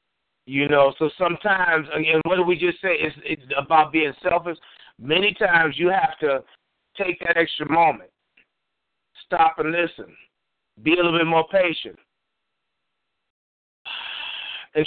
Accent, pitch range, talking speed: American, 155-185 Hz, 135 wpm